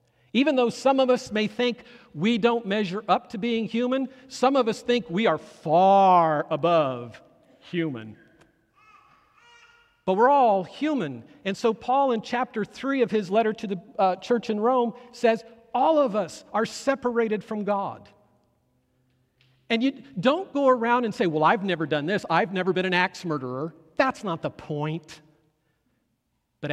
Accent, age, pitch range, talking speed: American, 50-69, 160-245 Hz, 165 wpm